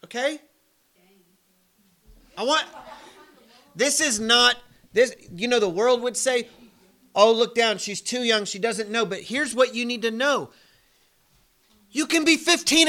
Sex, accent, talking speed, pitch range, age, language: male, American, 155 wpm, 195-265 Hz, 40-59, English